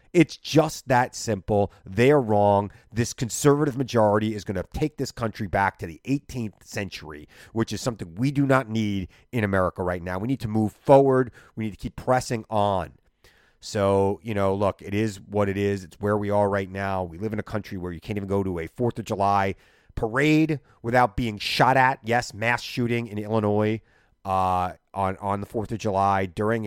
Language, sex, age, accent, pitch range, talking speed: English, male, 30-49, American, 100-125 Hz, 205 wpm